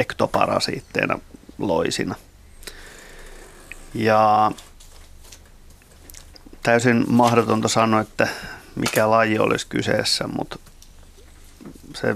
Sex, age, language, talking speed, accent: male, 30-49, Finnish, 65 wpm, native